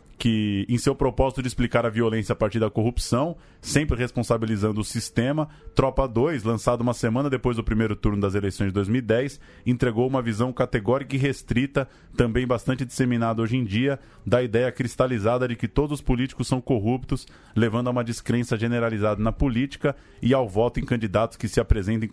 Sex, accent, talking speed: male, Brazilian, 180 wpm